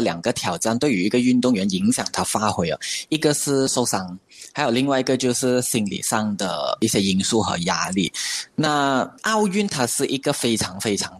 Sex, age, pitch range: male, 20-39, 110-155 Hz